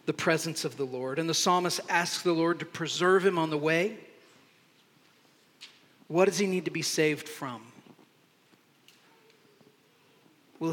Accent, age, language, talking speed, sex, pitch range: American, 40-59, English, 145 wpm, male, 150-180 Hz